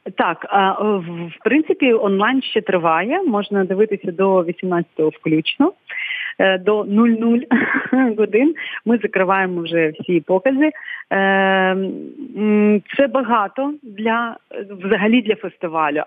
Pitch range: 185-235 Hz